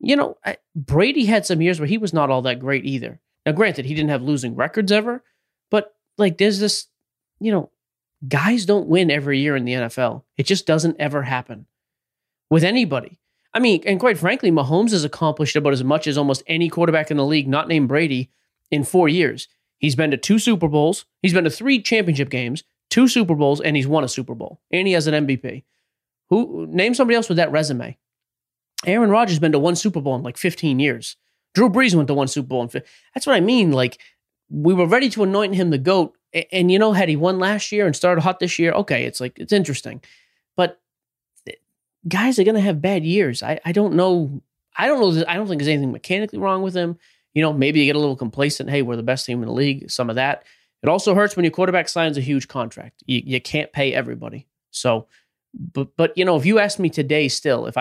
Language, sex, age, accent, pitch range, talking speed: English, male, 30-49, American, 140-195 Hz, 230 wpm